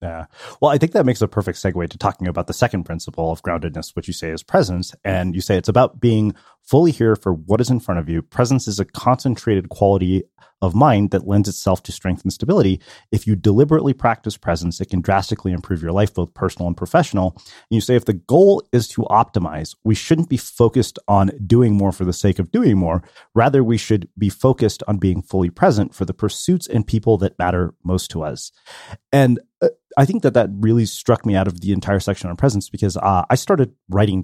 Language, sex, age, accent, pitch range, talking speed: English, male, 30-49, American, 90-120 Hz, 225 wpm